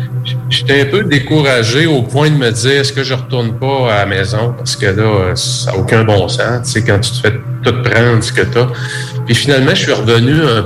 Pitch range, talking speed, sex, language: 115-130 Hz, 250 wpm, male, English